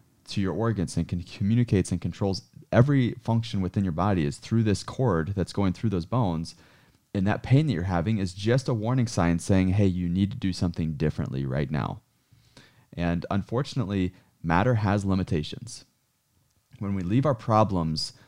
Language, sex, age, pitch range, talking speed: English, male, 30-49, 85-110 Hz, 170 wpm